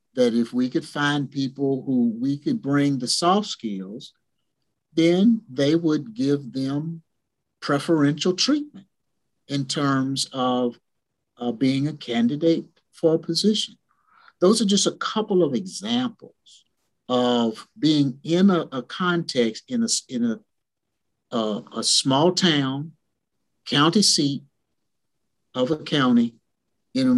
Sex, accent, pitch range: male, American, 120-200 Hz